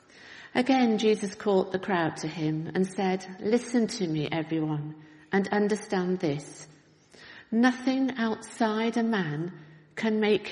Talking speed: 125 wpm